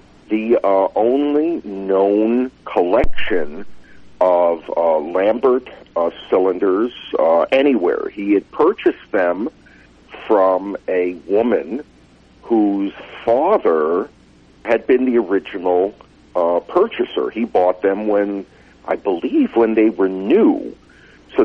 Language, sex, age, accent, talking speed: English, male, 50-69, American, 105 wpm